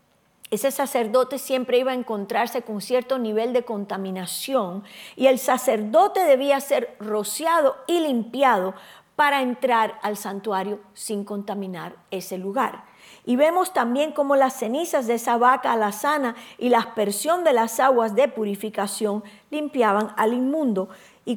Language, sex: English, female